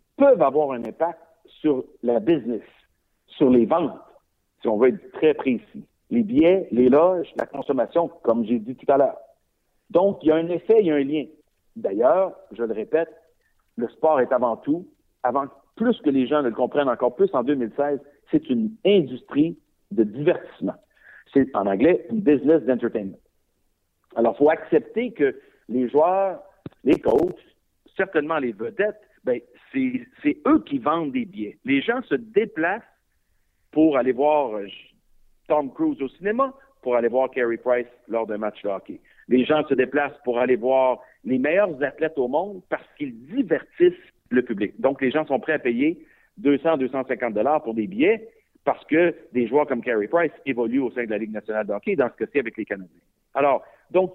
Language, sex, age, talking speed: French, male, 60-79, 180 wpm